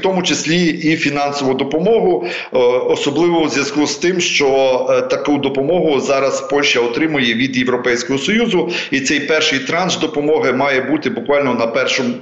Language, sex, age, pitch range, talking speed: Ukrainian, male, 40-59, 130-165 Hz, 145 wpm